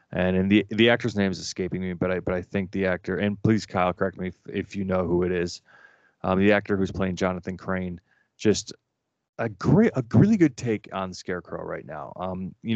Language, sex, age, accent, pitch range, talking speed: English, male, 30-49, American, 90-105 Hz, 225 wpm